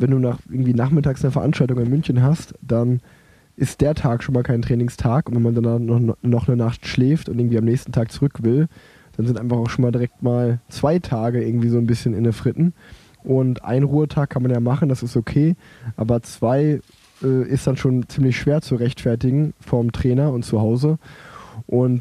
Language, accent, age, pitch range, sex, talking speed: German, German, 20-39, 120-140 Hz, male, 205 wpm